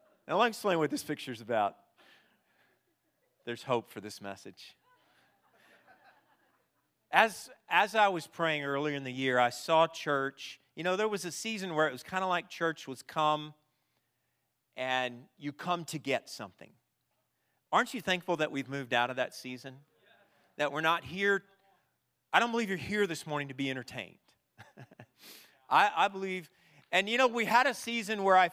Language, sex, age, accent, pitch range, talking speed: English, male, 40-59, American, 140-195 Hz, 175 wpm